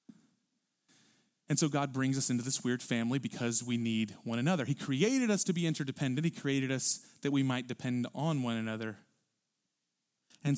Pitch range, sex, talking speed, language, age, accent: 120-170 Hz, male, 175 wpm, English, 30-49, American